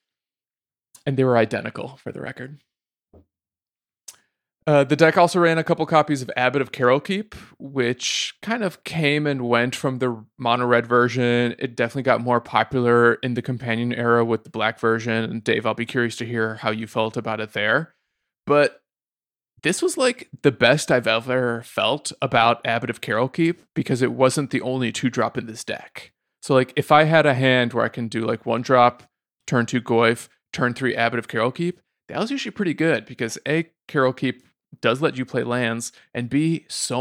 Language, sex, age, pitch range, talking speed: English, male, 20-39, 120-145 Hz, 195 wpm